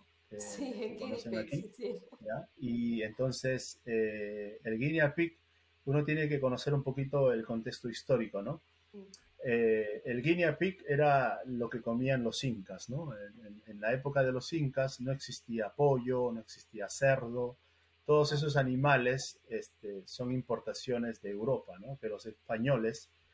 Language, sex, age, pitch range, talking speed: English, male, 30-49, 95-130 Hz, 145 wpm